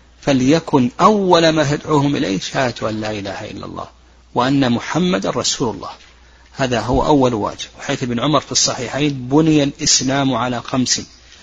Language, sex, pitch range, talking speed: Arabic, male, 120-150 Hz, 145 wpm